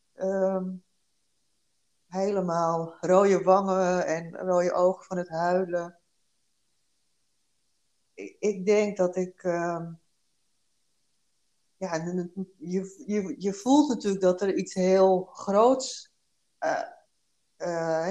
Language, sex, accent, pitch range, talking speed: Dutch, female, Dutch, 165-195 Hz, 85 wpm